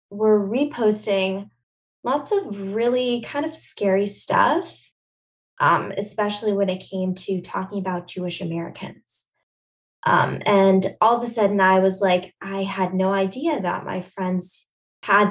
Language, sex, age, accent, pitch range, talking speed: English, female, 10-29, American, 185-225 Hz, 145 wpm